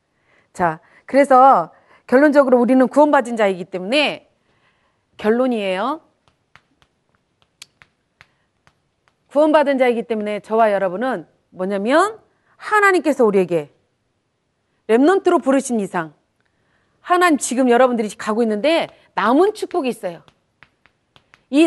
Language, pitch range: Korean, 215-335 Hz